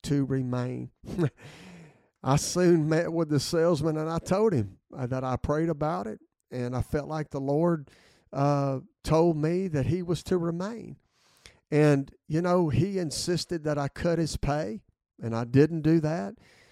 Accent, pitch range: American, 130-160 Hz